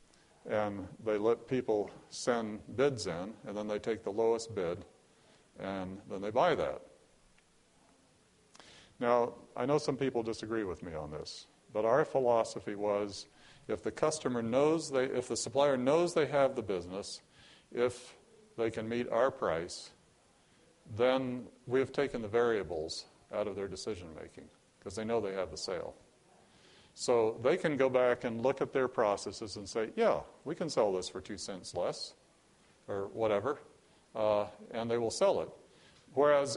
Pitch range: 110-135 Hz